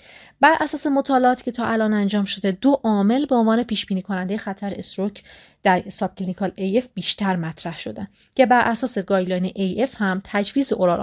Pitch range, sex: 190-245 Hz, female